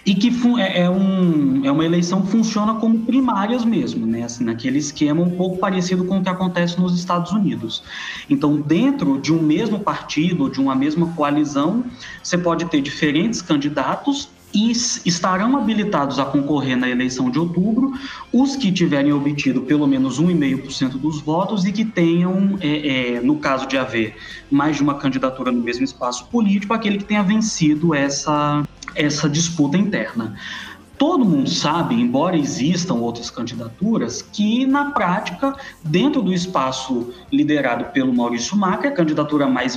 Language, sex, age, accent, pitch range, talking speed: Portuguese, male, 20-39, Brazilian, 140-200 Hz, 150 wpm